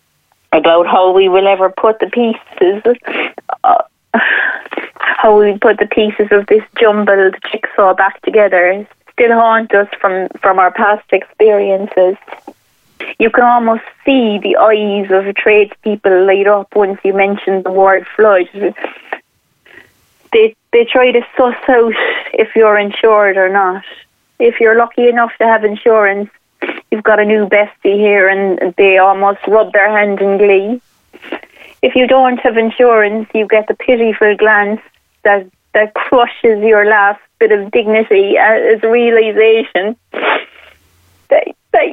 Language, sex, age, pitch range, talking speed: English, female, 30-49, 200-245 Hz, 140 wpm